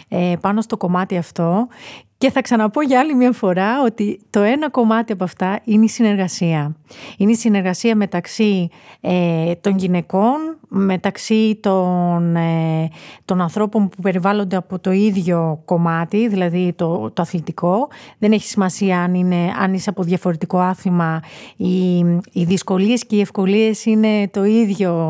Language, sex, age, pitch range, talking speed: Greek, female, 30-49, 175-205 Hz, 145 wpm